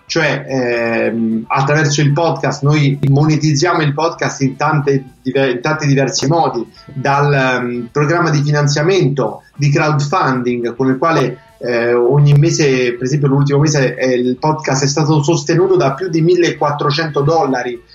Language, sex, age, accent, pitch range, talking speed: Italian, male, 30-49, native, 135-160 Hz, 135 wpm